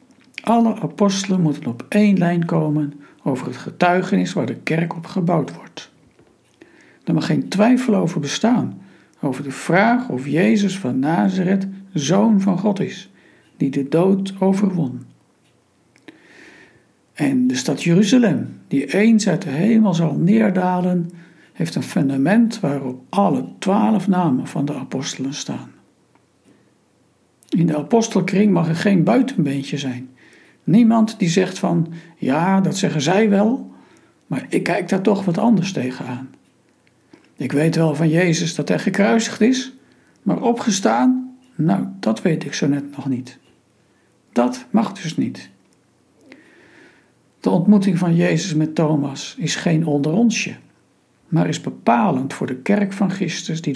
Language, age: Dutch, 60-79